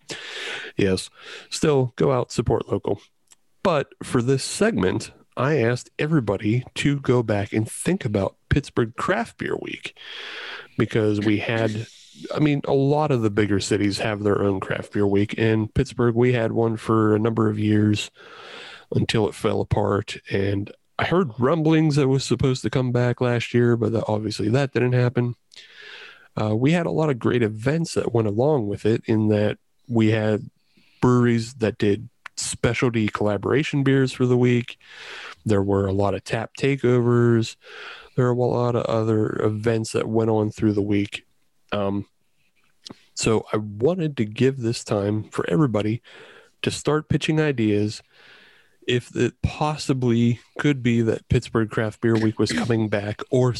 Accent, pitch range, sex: American, 105-125 Hz, male